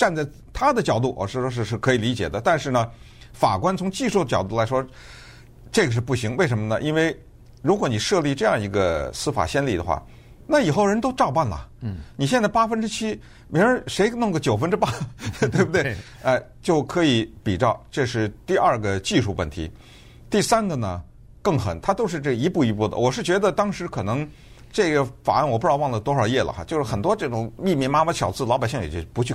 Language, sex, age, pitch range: Chinese, male, 50-69, 110-160 Hz